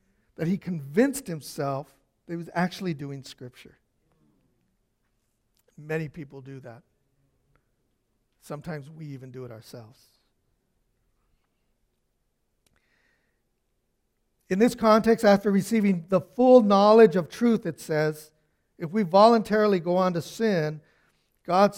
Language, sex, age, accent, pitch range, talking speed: English, male, 60-79, American, 145-185 Hz, 110 wpm